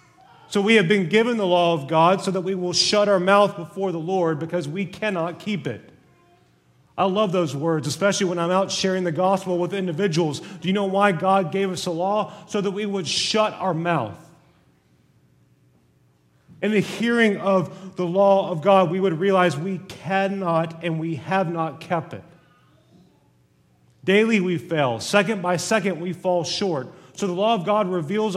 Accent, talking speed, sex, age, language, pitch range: American, 185 wpm, male, 30-49, English, 155-195 Hz